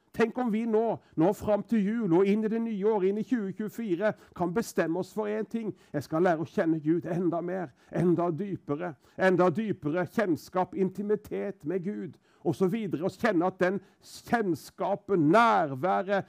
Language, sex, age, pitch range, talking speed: English, male, 50-69, 175-220 Hz, 175 wpm